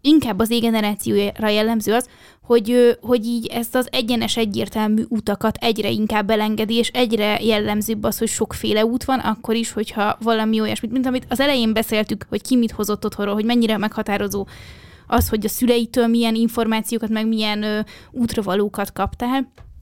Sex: female